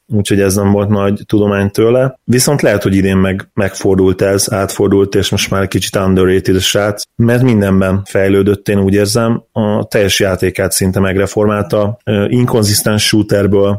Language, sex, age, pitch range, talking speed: Hungarian, male, 30-49, 100-110 Hz, 150 wpm